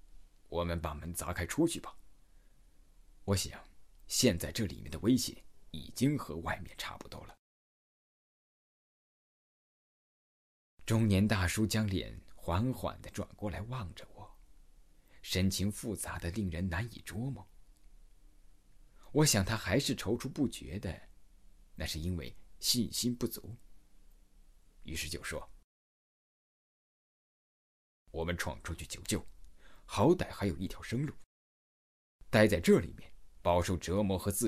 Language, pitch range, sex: Chinese, 80-105 Hz, male